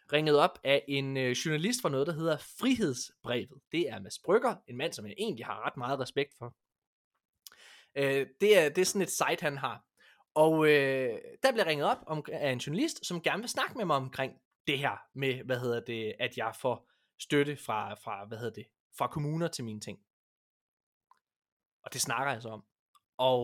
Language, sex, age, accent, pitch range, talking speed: Danish, male, 20-39, native, 130-185 Hz, 200 wpm